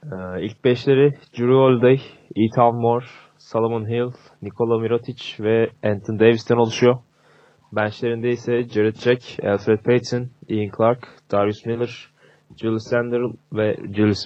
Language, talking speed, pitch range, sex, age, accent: Turkish, 120 wpm, 105-120 Hz, male, 20-39, native